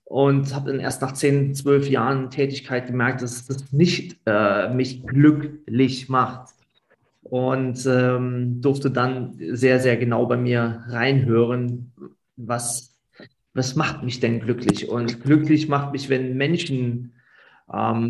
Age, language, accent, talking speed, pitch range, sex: 30-49, German, German, 135 wpm, 125-145 Hz, male